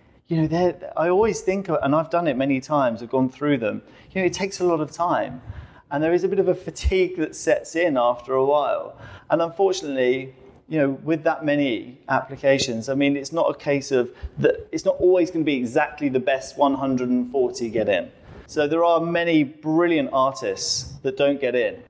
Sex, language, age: male, English, 30-49